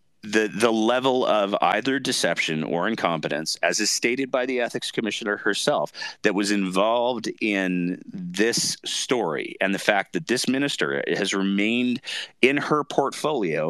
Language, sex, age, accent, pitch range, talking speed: English, male, 40-59, American, 85-115 Hz, 145 wpm